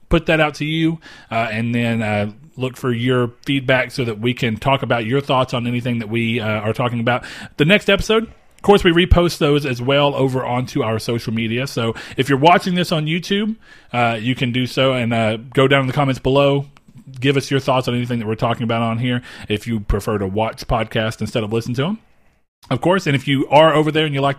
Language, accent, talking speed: English, American, 240 wpm